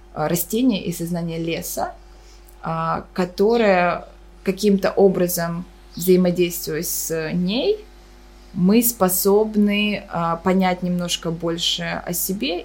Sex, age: female, 20-39